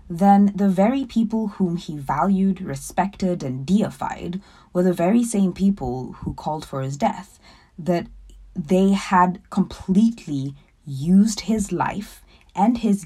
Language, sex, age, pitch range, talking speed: English, female, 20-39, 165-220 Hz, 135 wpm